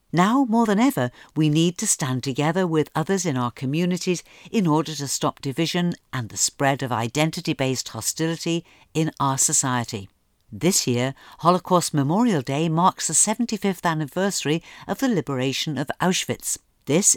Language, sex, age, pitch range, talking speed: English, female, 50-69, 135-185 Hz, 150 wpm